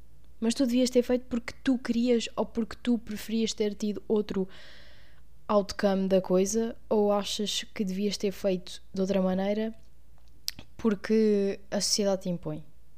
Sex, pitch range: female, 180-230 Hz